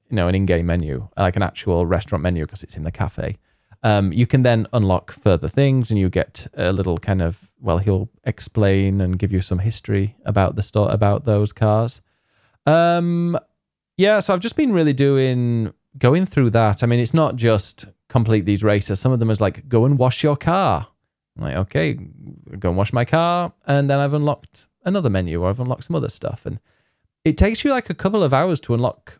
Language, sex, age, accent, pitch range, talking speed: English, male, 20-39, British, 95-125 Hz, 210 wpm